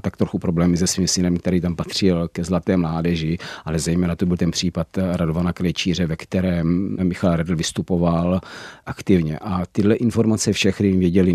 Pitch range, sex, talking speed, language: 85-105 Hz, male, 165 wpm, Czech